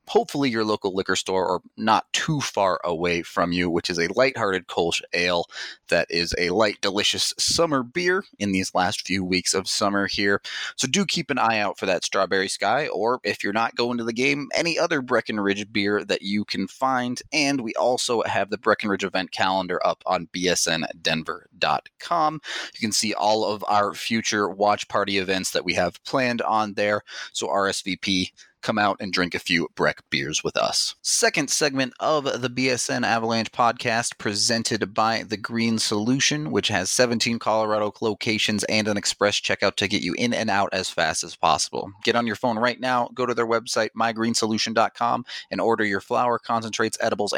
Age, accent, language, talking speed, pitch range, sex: 30-49, American, English, 185 wpm, 100-120 Hz, male